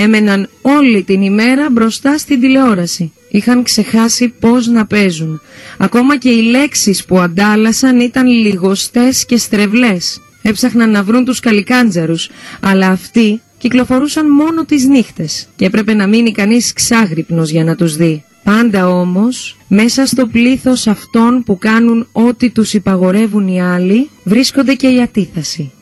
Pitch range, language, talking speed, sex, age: 185-245 Hz, Greek, 140 wpm, female, 30-49